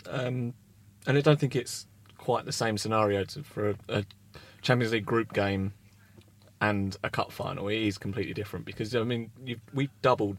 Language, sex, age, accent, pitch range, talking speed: English, male, 20-39, British, 100-125 Hz, 175 wpm